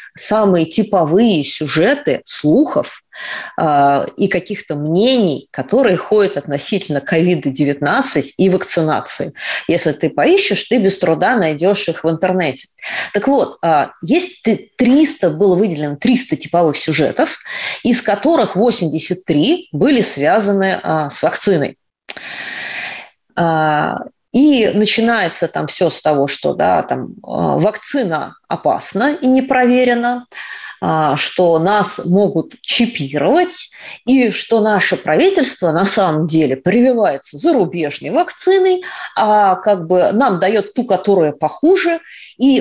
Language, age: Russian, 30-49